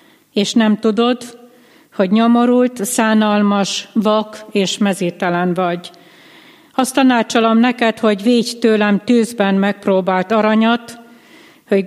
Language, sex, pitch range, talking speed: Hungarian, female, 185-225 Hz, 100 wpm